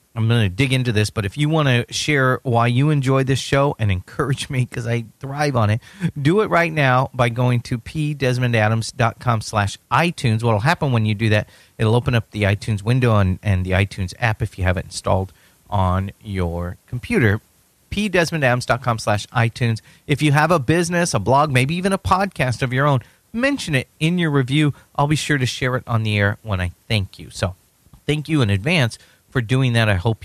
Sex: male